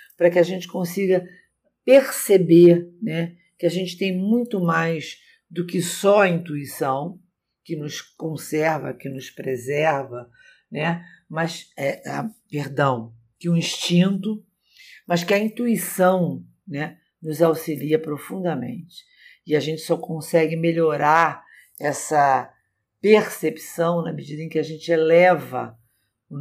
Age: 50-69